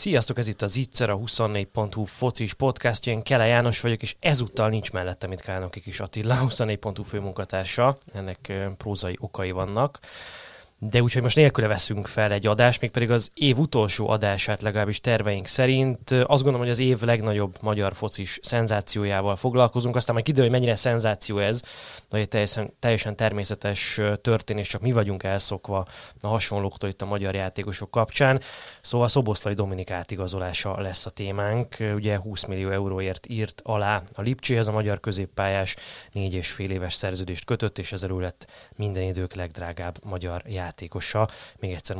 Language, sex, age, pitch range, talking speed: Hungarian, male, 20-39, 100-120 Hz, 155 wpm